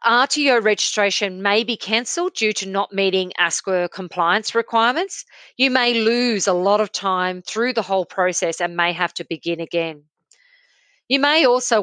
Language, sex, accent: English, female, Australian